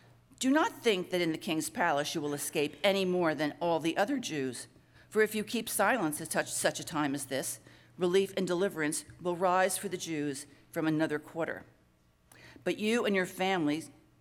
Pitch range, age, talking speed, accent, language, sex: 140-180 Hz, 50-69, 190 wpm, American, English, female